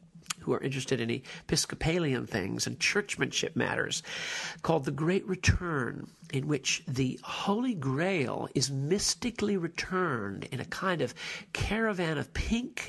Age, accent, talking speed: 50-69, American, 130 wpm